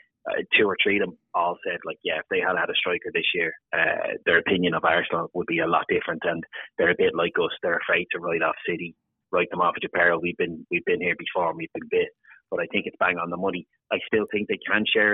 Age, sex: 30-49, male